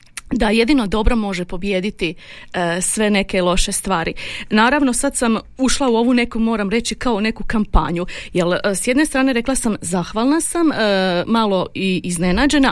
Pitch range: 205-265 Hz